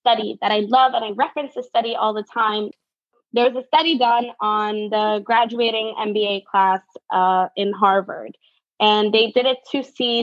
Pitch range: 220-290 Hz